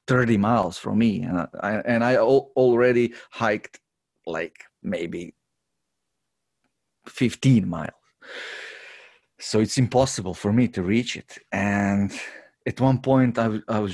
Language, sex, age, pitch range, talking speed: English, male, 40-59, 110-135 Hz, 135 wpm